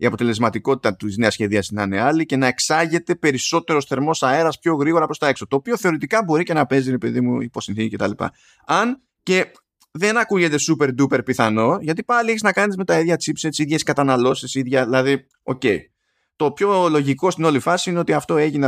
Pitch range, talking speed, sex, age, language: 115-165 Hz, 200 wpm, male, 20-39, Greek